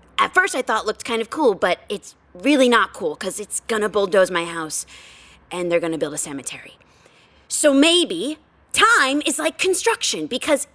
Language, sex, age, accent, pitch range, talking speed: English, female, 30-49, American, 195-280 Hz, 195 wpm